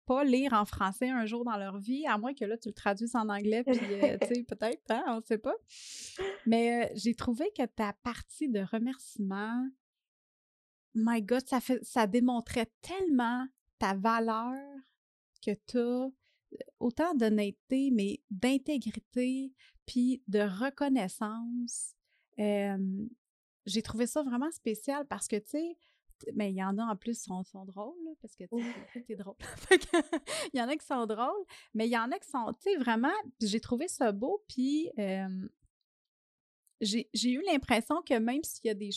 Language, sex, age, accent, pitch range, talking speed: French, female, 30-49, Canadian, 220-270 Hz, 175 wpm